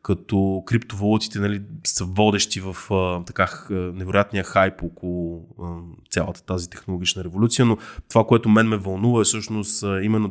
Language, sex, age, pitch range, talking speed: Bulgarian, male, 20-39, 95-110 Hz, 130 wpm